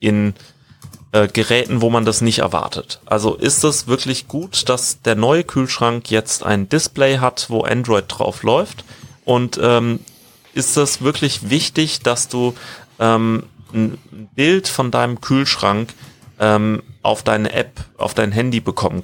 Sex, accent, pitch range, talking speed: male, German, 110-130 Hz, 150 wpm